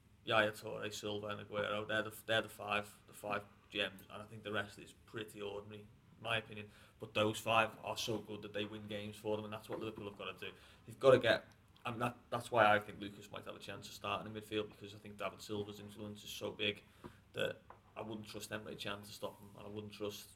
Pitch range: 100-110 Hz